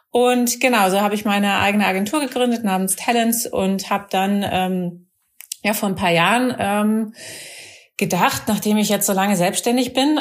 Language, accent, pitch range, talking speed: German, German, 185-230 Hz, 170 wpm